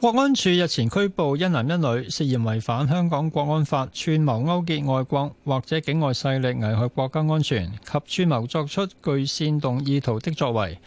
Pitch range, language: 115-150 Hz, Chinese